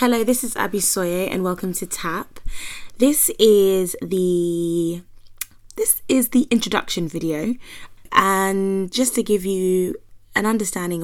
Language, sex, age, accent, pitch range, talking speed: English, female, 20-39, British, 165-195 Hz, 130 wpm